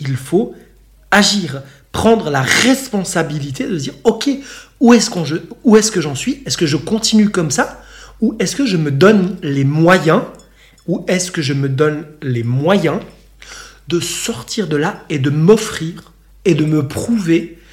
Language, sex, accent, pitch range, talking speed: French, male, French, 140-195 Hz, 160 wpm